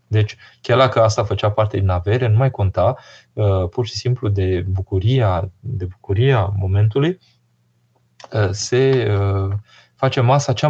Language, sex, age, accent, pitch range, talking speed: Romanian, male, 20-39, native, 105-130 Hz, 130 wpm